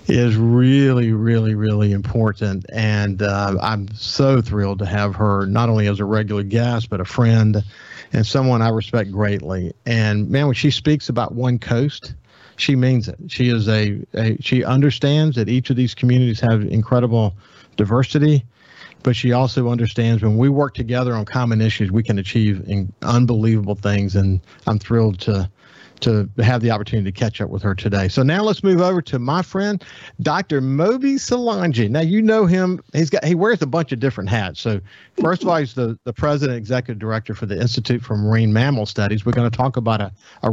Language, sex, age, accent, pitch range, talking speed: English, male, 50-69, American, 110-135 Hz, 195 wpm